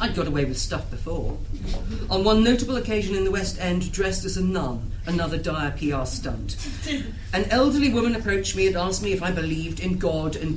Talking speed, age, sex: 205 wpm, 40-59, female